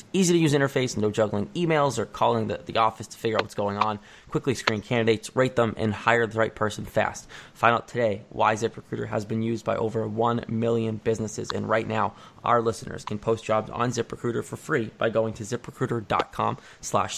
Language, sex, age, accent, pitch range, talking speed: English, male, 20-39, American, 110-120 Hz, 205 wpm